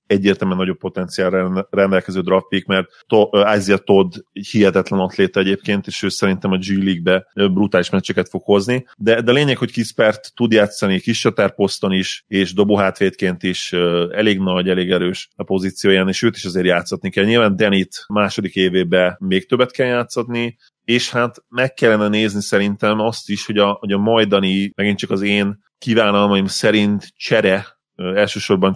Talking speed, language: 165 wpm, Hungarian